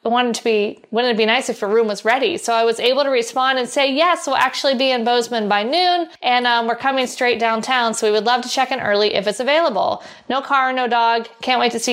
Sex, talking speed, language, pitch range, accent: female, 270 wpm, English, 220-265 Hz, American